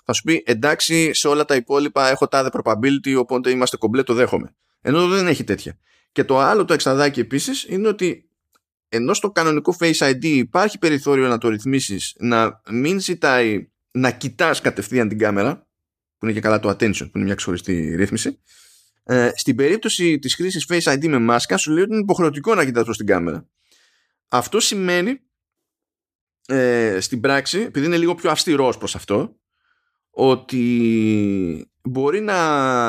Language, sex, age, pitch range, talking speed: Greek, male, 20-39, 105-150 Hz, 160 wpm